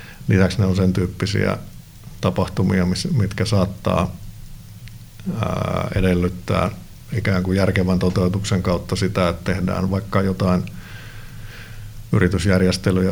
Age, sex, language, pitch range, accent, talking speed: 50-69, male, Finnish, 90-110 Hz, native, 90 wpm